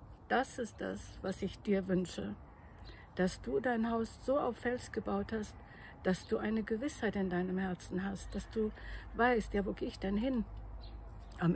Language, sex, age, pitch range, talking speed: German, female, 60-79, 170-220 Hz, 175 wpm